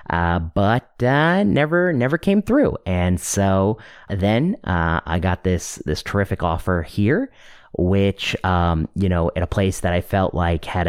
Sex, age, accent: male, 30-49, American